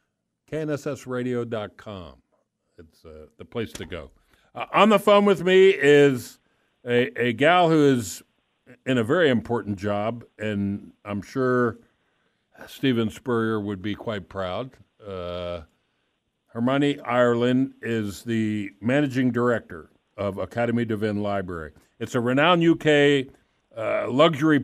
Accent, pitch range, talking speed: American, 105-130 Hz, 120 wpm